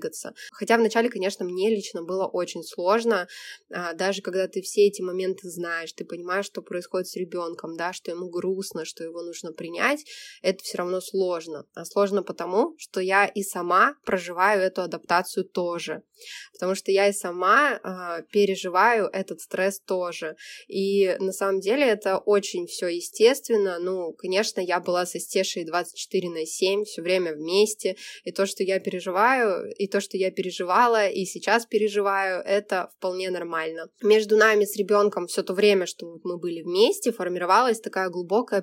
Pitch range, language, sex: 180-215 Hz, Russian, female